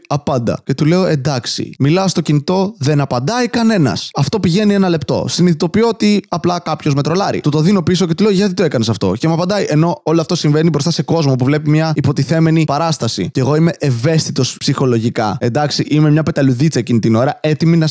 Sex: male